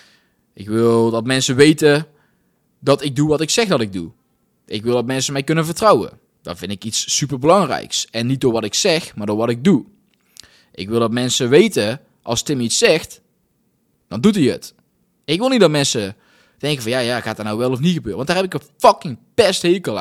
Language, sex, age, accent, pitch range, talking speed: Dutch, male, 20-39, Dutch, 115-160 Hz, 220 wpm